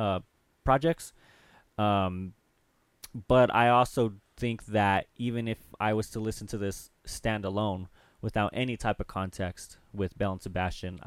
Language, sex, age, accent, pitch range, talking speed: English, male, 20-39, American, 95-120 Hz, 140 wpm